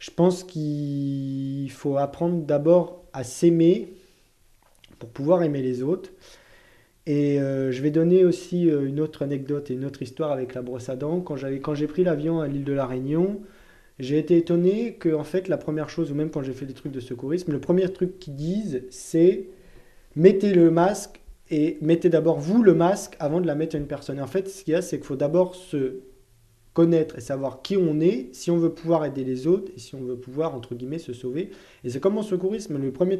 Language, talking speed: French, 225 wpm